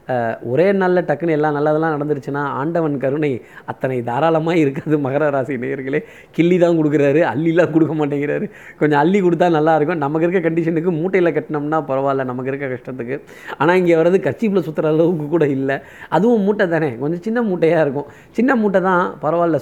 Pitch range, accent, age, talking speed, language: 135-165 Hz, native, 20-39, 160 wpm, Tamil